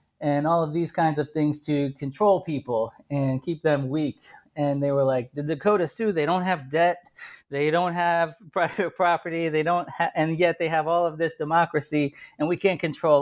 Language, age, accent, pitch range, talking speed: English, 30-49, American, 135-165 Hz, 190 wpm